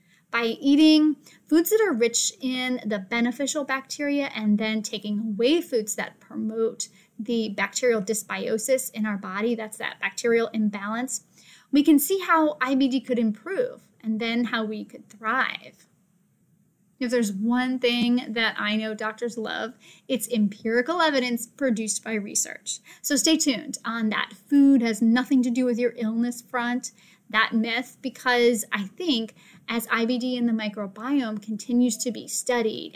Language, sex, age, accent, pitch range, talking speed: English, female, 10-29, American, 215-260 Hz, 150 wpm